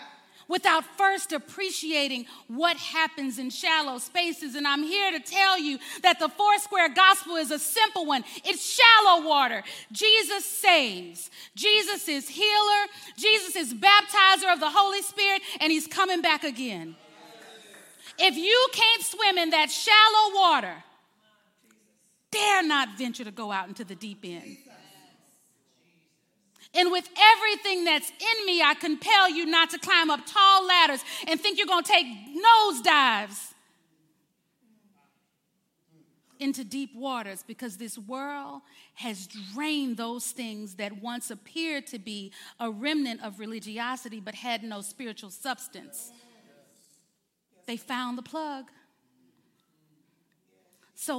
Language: English